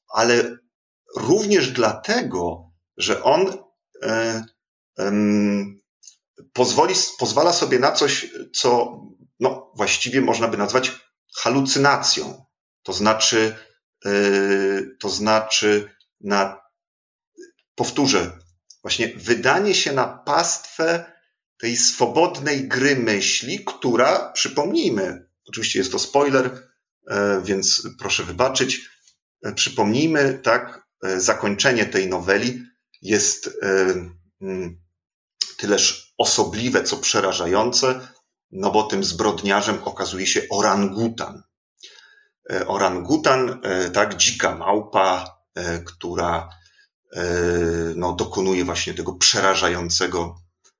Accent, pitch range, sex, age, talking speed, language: native, 95-125 Hz, male, 40-59, 85 wpm, Polish